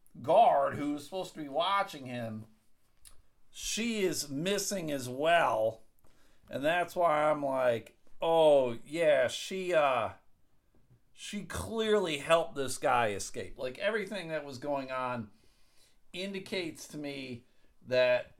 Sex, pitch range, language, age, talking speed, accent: male, 125-185 Hz, English, 50-69, 125 wpm, American